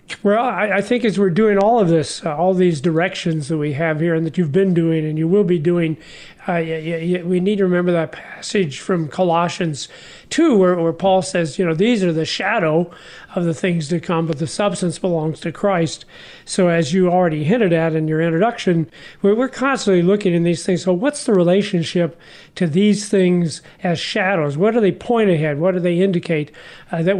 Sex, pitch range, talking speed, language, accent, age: male, 165-200 Hz, 205 wpm, English, American, 40-59